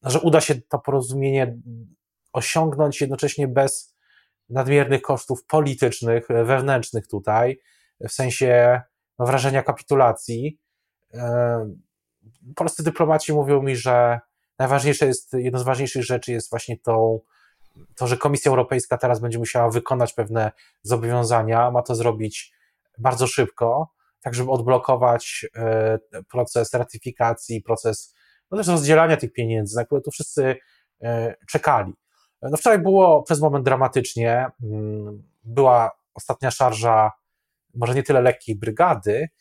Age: 20-39